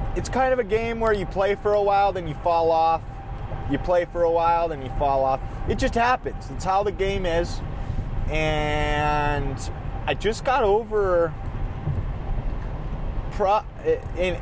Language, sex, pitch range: English, male, 130-195 Hz